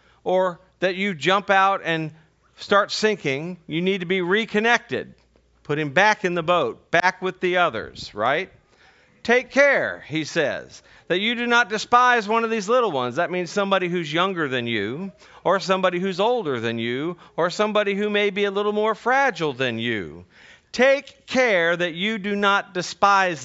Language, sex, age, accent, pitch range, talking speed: English, male, 40-59, American, 140-200 Hz, 175 wpm